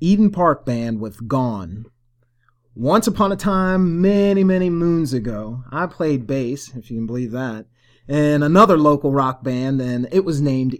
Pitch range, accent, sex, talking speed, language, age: 120-165 Hz, American, male, 165 wpm, English, 30-49